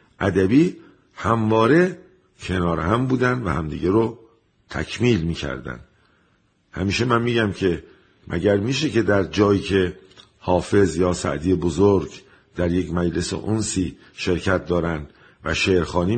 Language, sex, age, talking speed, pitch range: Persian, male, 50-69, 120 wpm, 85-110 Hz